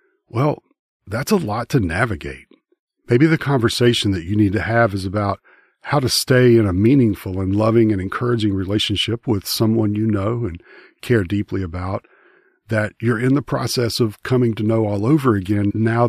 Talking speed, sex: 180 wpm, male